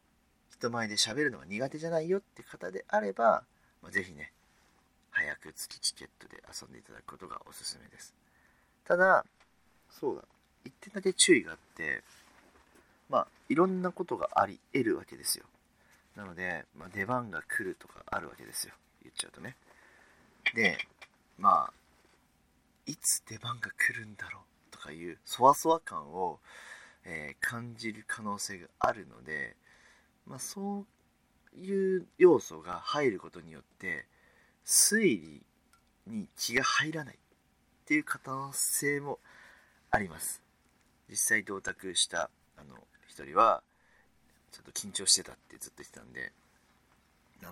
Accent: native